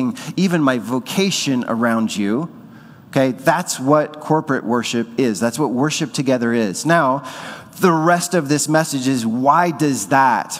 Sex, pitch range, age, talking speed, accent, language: male, 130-165 Hz, 30-49, 145 wpm, American, English